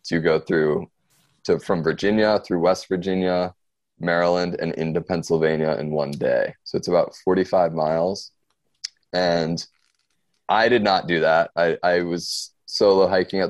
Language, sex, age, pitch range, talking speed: English, male, 20-39, 80-95 Hz, 150 wpm